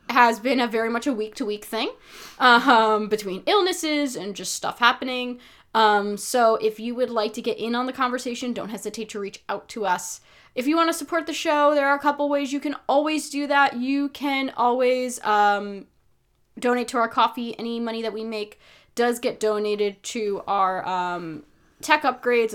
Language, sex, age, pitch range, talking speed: English, female, 10-29, 215-280 Hz, 195 wpm